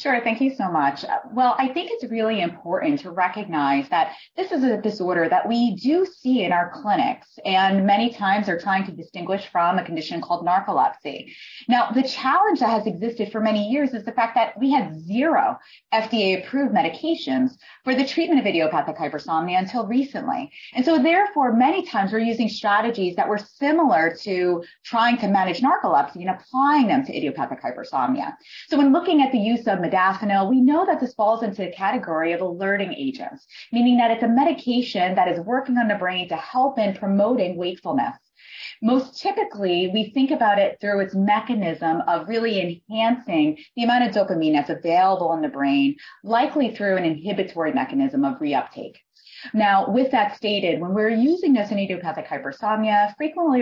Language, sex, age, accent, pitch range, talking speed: English, female, 30-49, American, 185-265 Hz, 180 wpm